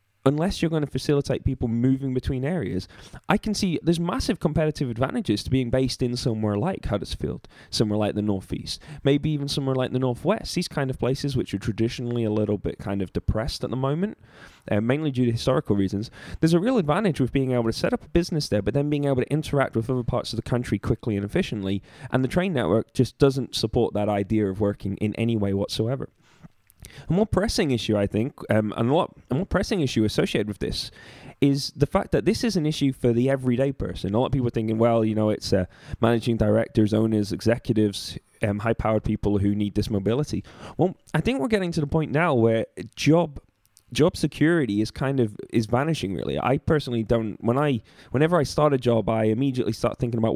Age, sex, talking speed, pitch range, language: 10-29, male, 215 wpm, 105-140 Hz, English